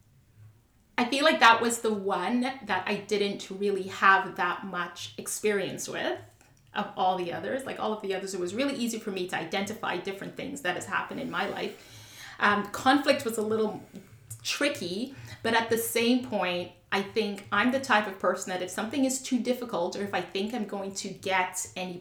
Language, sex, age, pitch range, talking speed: English, female, 30-49, 185-250 Hz, 200 wpm